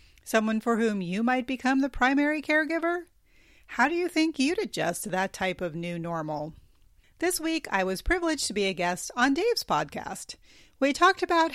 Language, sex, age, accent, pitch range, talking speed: English, female, 40-59, American, 190-285 Hz, 185 wpm